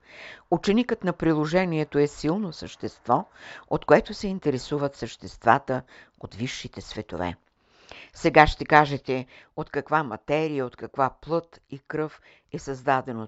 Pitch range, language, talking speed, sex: 115-150 Hz, Bulgarian, 120 wpm, female